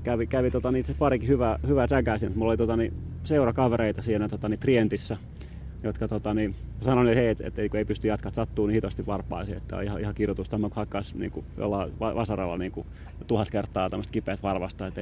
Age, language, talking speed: 30-49, Finnish, 185 wpm